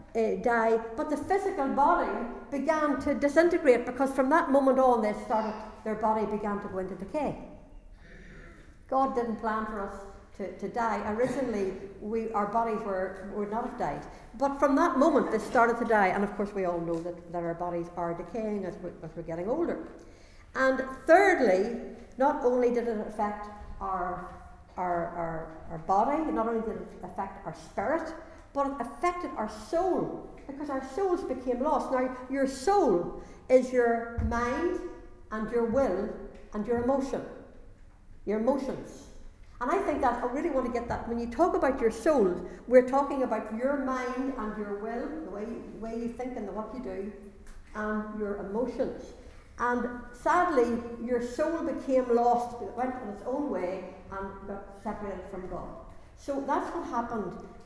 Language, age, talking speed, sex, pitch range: English, 60-79, 175 wpm, female, 205-270 Hz